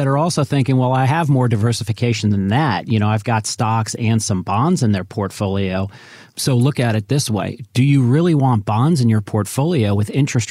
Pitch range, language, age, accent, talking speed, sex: 105-125 Hz, English, 40-59, American, 215 wpm, male